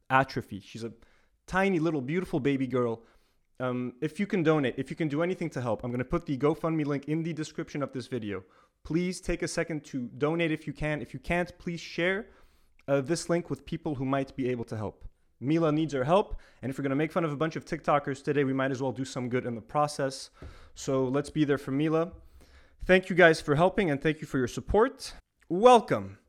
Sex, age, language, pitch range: male, 20-39, English, 130-175 Hz